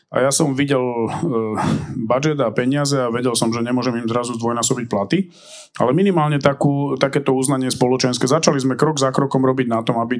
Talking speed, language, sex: 190 wpm, Slovak, male